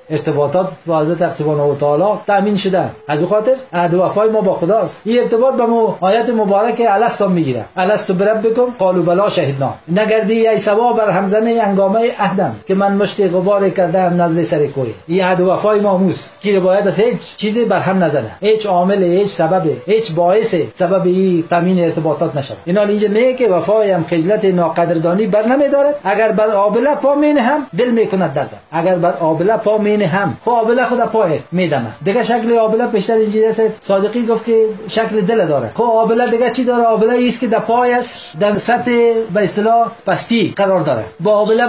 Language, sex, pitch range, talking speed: Persian, male, 185-235 Hz, 185 wpm